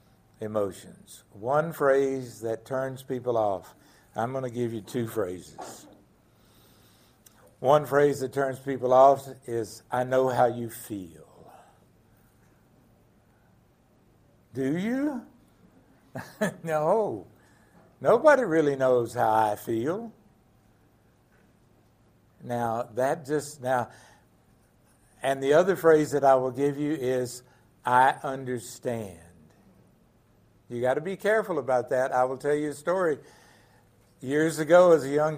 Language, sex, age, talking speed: English, male, 60-79, 115 wpm